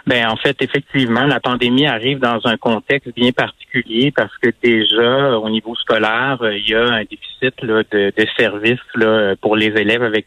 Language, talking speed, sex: French, 180 wpm, male